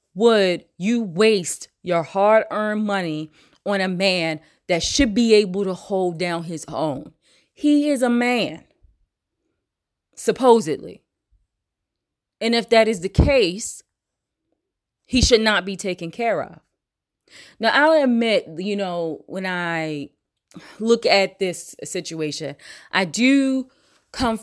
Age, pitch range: 20-39, 160-200 Hz